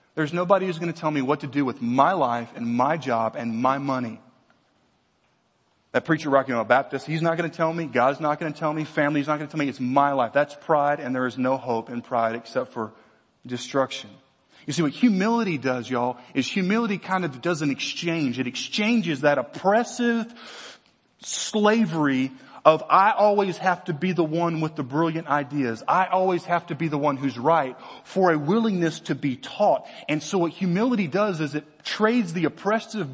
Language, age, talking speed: English, 30-49, 205 wpm